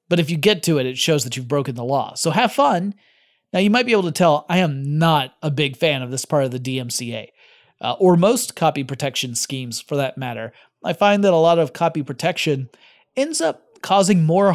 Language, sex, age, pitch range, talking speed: English, male, 30-49, 135-175 Hz, 230 wpm